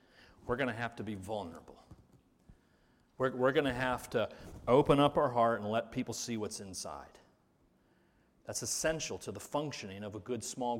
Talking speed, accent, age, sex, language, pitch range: 180 wpm, American, 40-59, male, English, 120-185 Hz